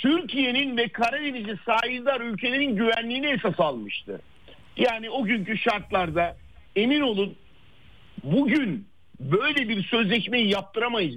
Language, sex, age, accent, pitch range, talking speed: Turkish, male, 50-69, native, 185-240 Hz, 100 wpm